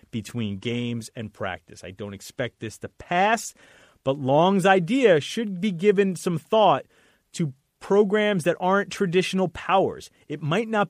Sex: male